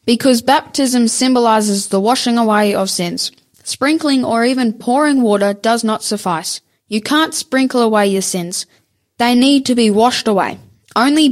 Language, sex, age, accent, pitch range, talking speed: English, female, 10-29, Australian, 200-265 Hz, 155 wpm